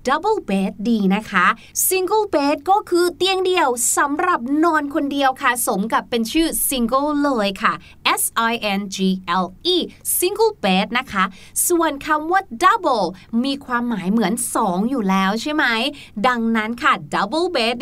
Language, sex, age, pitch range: Thai, female, 20-39, 220-335 Hz